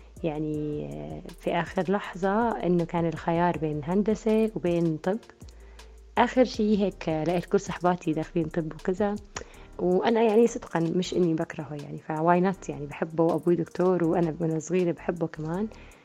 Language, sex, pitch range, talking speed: Arabic, female, 165-205 Hz, 140 wpm